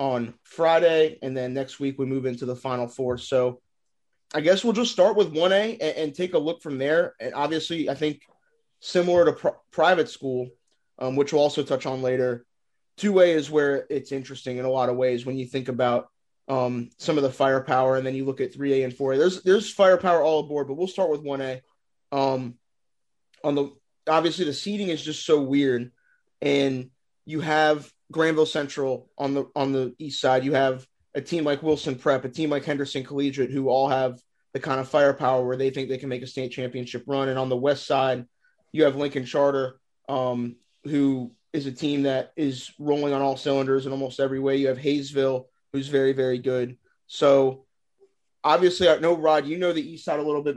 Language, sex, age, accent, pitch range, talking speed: English, male, 20-39, American, 130-150 Hz, 205 wpm